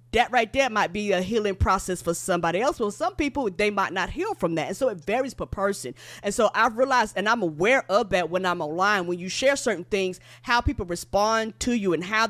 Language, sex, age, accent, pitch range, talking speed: English, female, 20-39, American, 185-235 Hz, 245 wpm